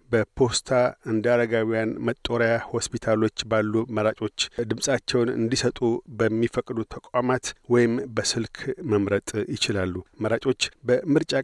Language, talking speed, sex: Amharic, 90 wpm, male